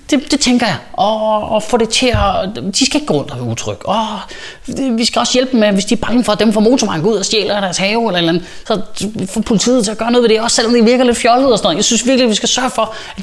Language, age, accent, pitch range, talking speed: Danish, 20-39, native, 160-230 Hz, 305 wpm